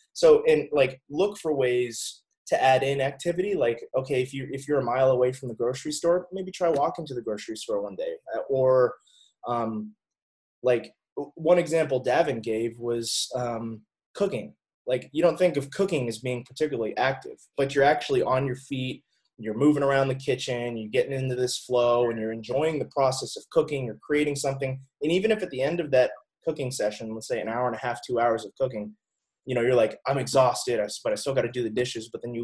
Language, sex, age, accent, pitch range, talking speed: English, male, 20-39, American, 120-155 Hz, 215 wpm